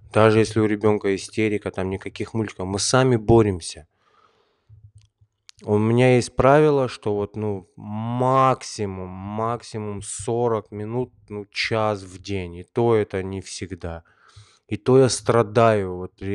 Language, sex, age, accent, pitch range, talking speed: Russian, male, 20-39, native, 100-115 Hz, 130 wpm